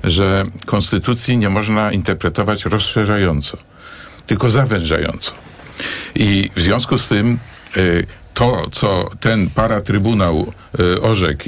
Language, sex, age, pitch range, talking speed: Polish, male, 50-69, 95-115 Hz, 95 wpm